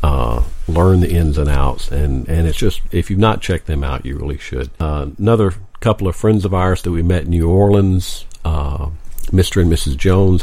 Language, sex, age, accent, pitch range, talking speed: English, male, 50-69, American, 80-95 Hz, 215 wpm